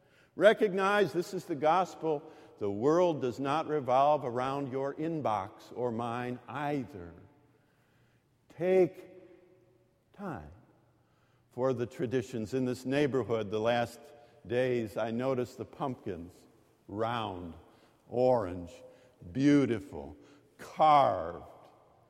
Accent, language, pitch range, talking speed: American, English, 120-180 Hz, 95 wpm